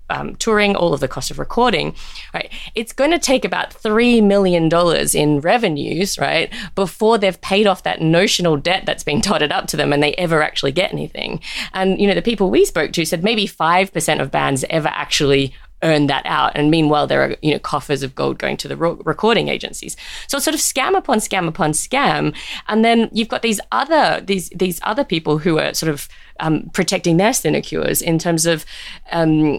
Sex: female